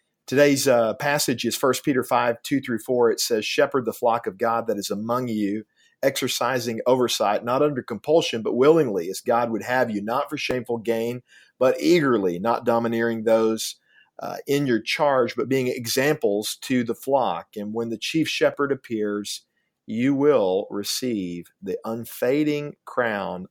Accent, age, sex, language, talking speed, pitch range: American, 40-59, male, English, 160 wpm, 115-135 Hz